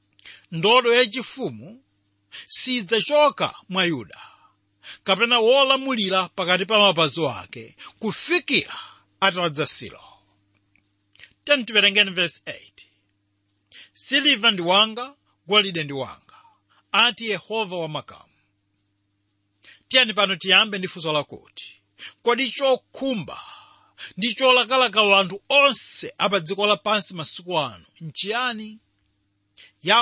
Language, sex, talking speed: English, male, 80 wpm